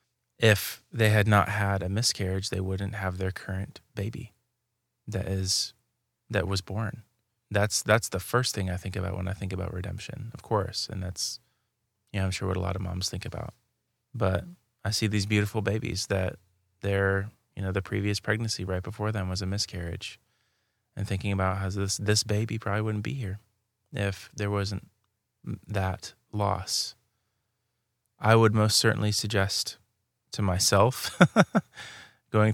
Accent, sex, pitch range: American, male, 95-110 Hz